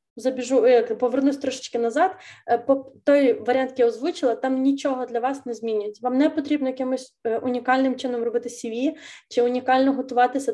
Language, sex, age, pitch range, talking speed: Ukrainian, female, 20-39, 235-275 Hz, 150 wpm